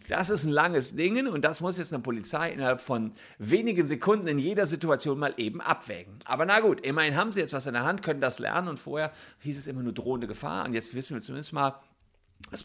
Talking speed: 235 wpm